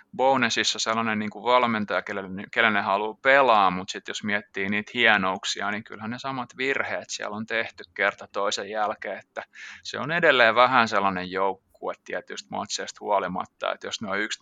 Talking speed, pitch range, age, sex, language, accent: 180 wpm, 95-115 Hz, 20-39, male, Finnish, native